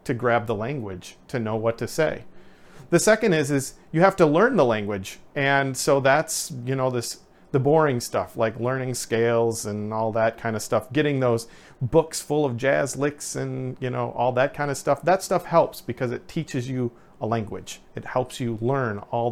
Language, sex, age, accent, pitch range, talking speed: English, male, 40-59, American, 120-155 Hz, 200 wpm